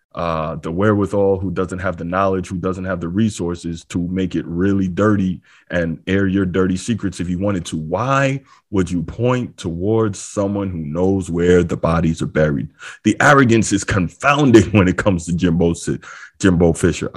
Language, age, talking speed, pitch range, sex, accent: English, 20-39, 180 wpm, 90-105 Hz, male, American